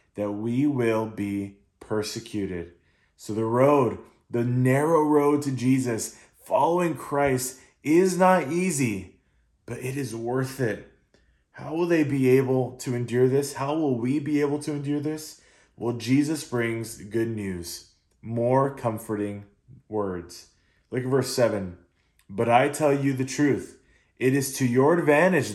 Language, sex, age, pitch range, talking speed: English, male, 20-39, 110-145 Hz, 145 wpm